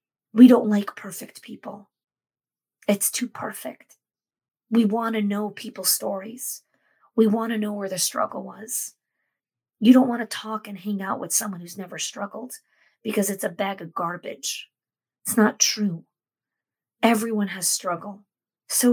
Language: English